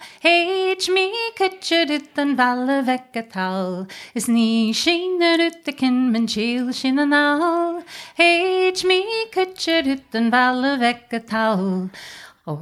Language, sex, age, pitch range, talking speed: English, female, 30-49, 225-335 Hz, 115 wpm